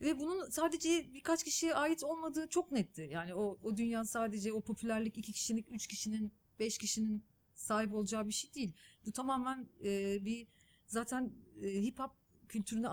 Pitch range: 195-265 Hz